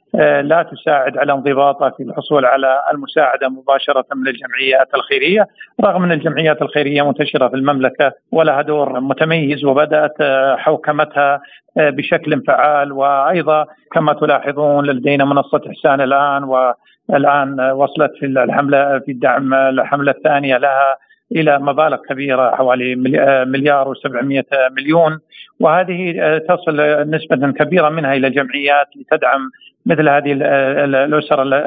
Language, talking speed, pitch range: Arabic, 115 wpm, 135-155 Hz